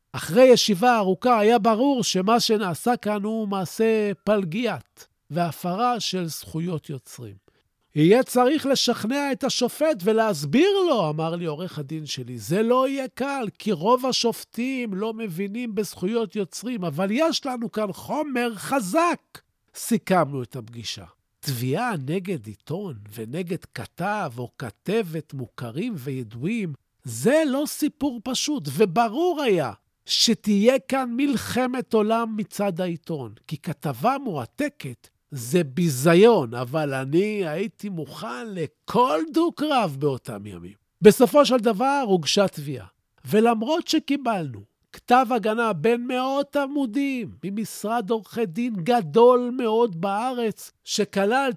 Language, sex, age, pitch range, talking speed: Hebrew, male, 50-69, 165-245 Hz, 115 wpm